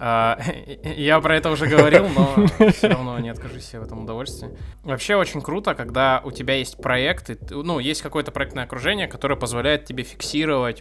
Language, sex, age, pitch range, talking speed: Russian, male, 20-39, 115-140 Hz, 165 wpm